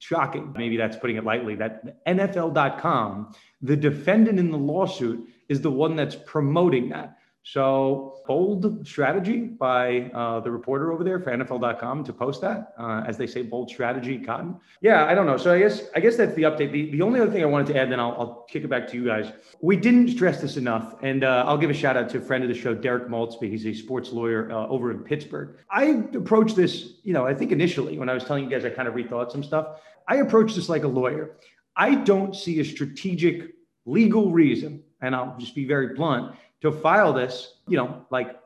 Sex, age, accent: male, 30-49, American